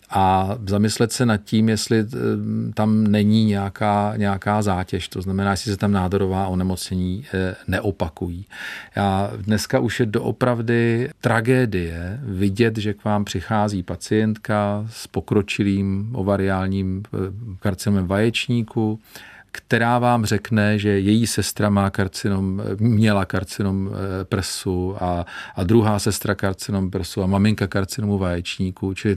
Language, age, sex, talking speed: Czech, 40-59, male, 120 wpm